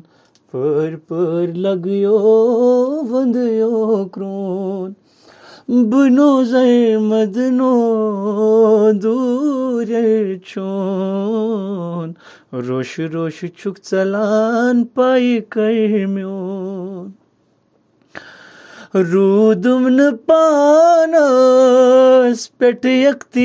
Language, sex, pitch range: Urdu, male, 190-250 Hz